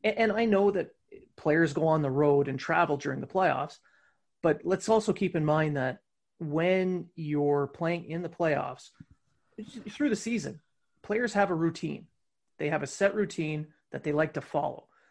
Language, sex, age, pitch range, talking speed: English, male, 30-49, 150-180 Hz, 175 wpm